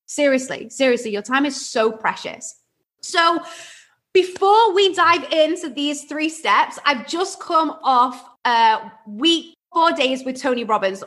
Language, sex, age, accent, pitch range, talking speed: English, female, 20-39, British, 255-345 Hz, 140 wpm